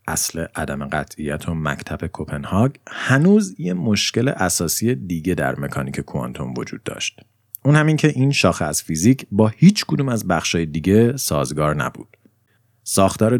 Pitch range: 90-125 Hz